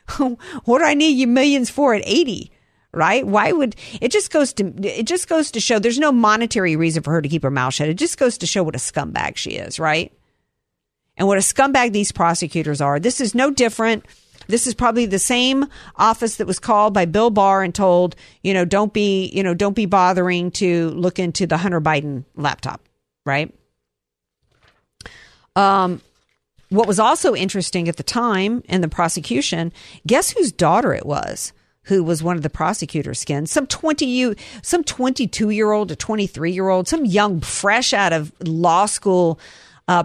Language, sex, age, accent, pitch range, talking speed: English, female, 50-69, American, 170-245 Hz, 185 wpm